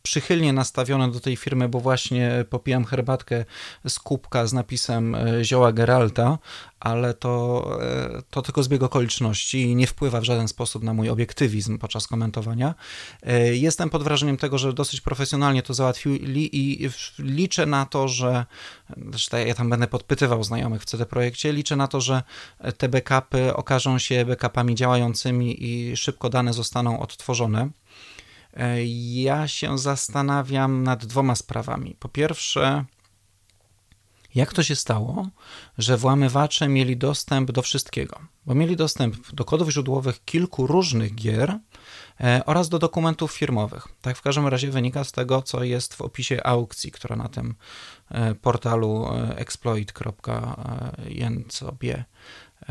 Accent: native